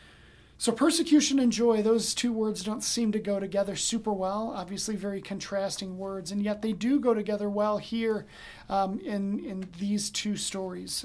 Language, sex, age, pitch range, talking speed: English, male, 40-59, 195-235 Hz, 175 wpm